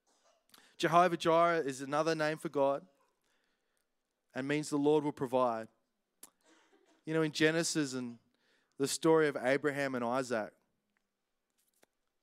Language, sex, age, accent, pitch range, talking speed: English, male, 20-39, Australian, 140-170 Hz, 120 wpm